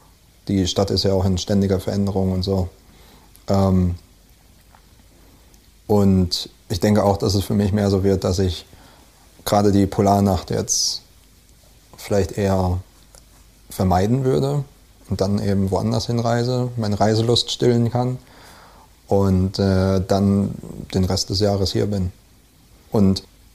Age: 30-49